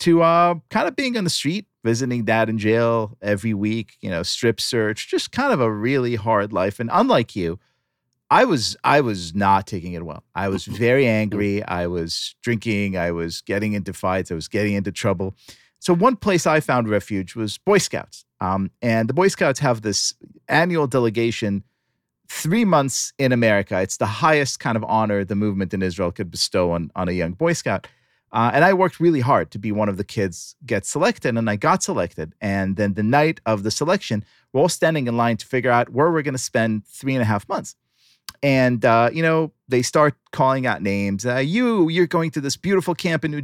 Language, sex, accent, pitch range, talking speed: English, male, American, 105-170 Hz, 215 wpm